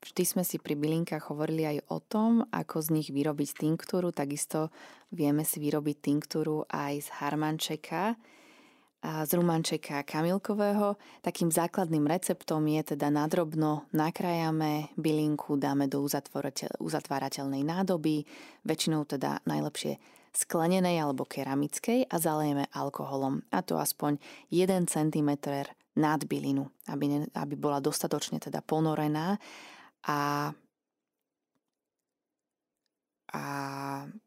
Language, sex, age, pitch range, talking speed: Slovak, female, 20-39, 145-170 Hz, 110 wpm